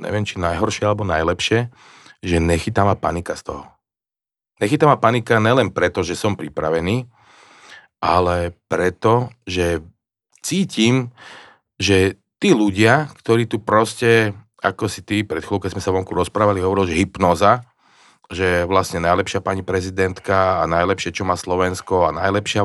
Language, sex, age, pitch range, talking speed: Slovak, male, 40-59, 90-115 Hz, 140 wpm